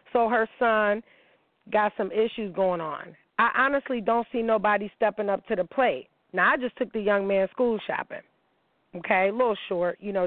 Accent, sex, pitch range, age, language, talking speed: American, female, 185-225 Hz, 40-59, English, 195 wpm